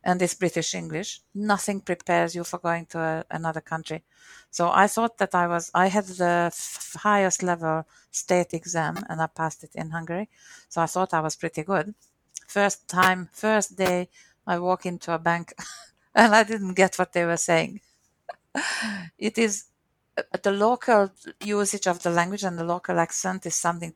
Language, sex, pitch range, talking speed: English, female, 165-190 Hz, 180 wpm